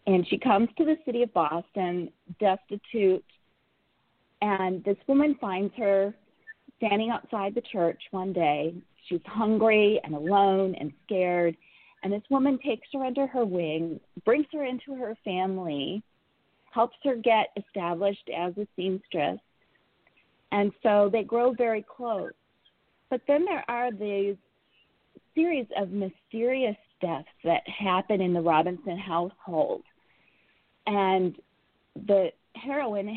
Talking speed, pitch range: 125 wpm, 185-235 Hz